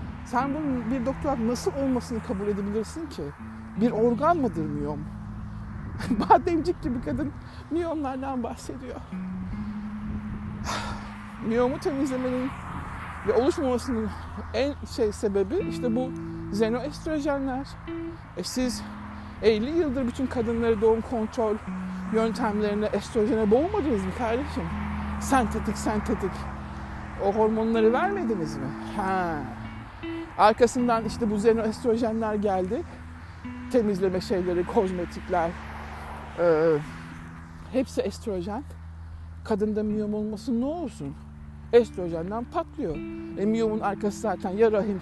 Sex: male